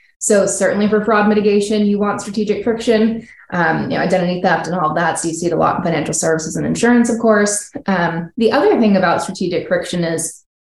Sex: female